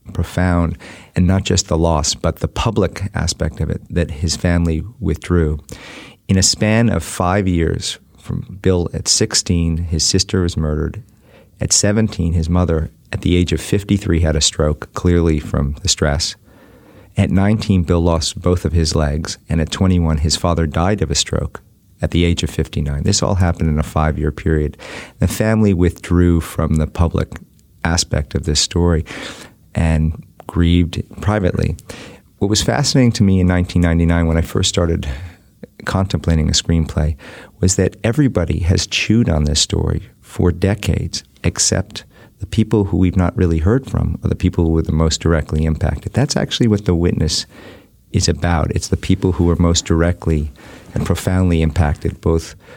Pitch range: 80-100 Hz